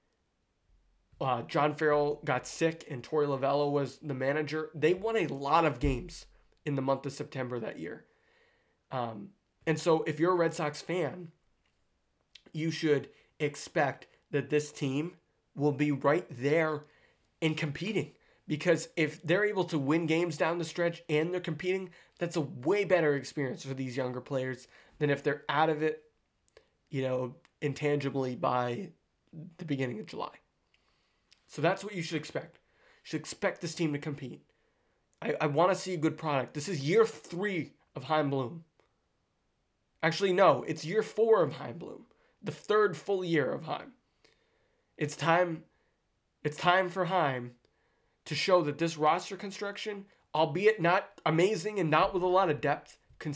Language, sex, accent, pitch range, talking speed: English, male, American, 145-175 Hz, 165 wpm